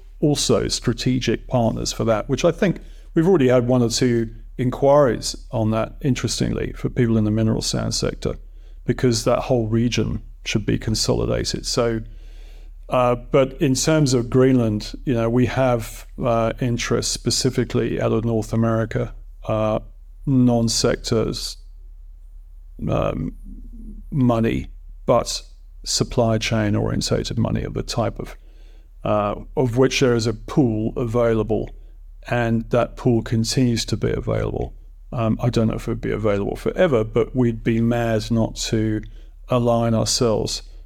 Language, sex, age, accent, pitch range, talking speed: English, male, 40-59, British, 105-125 Hz, 140 wpm